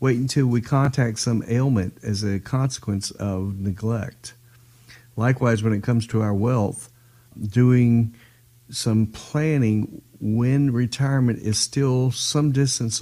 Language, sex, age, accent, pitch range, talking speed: English, male, 50-69, American, 105-125 Hz, 125 wpm